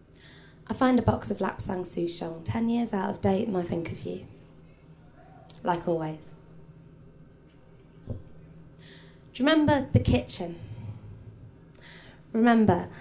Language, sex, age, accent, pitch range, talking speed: English, female, 20-39, British, 170-220 Hz, 115 wpm